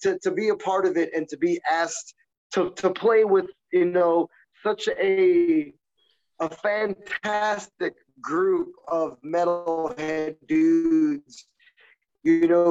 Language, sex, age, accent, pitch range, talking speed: English, male, 20-39, American, 150-210 Hz, 125 wpm